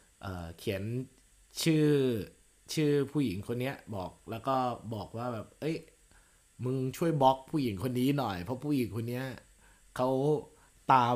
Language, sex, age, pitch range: Thai, male, 20-39, 105-130 Hz